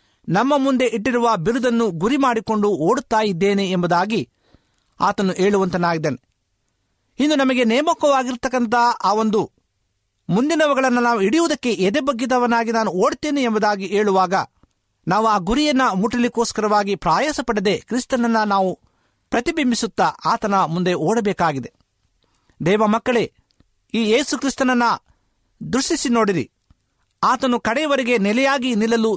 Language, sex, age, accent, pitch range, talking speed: Kannada, male, 50-69, native, 185-255 Hz, 90 wpm